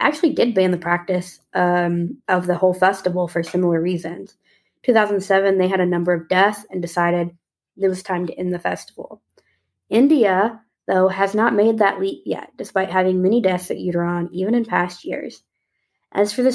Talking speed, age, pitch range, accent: 180 wpm, 20-39, 175-205 Hz, American